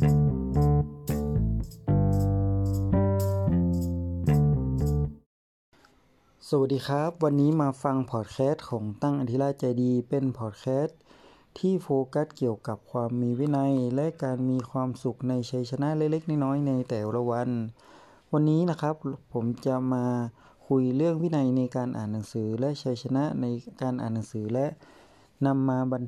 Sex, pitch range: male, 115-140 Hz